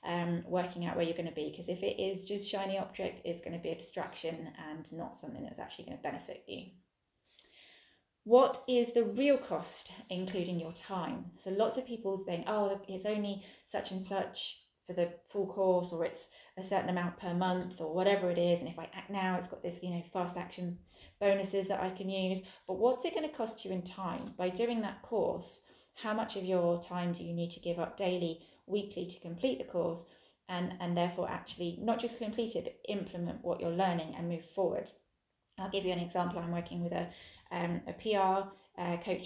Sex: female